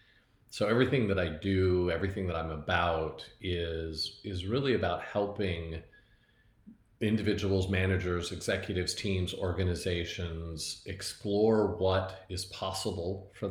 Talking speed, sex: 105 wpm, male